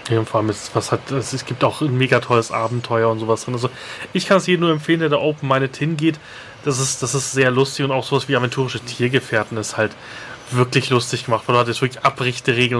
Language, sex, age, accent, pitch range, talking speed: German, male, 30-49, German, 125-165 Hz, 245 wpm